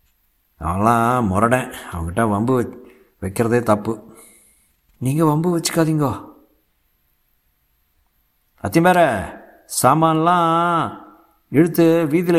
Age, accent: 60-79, native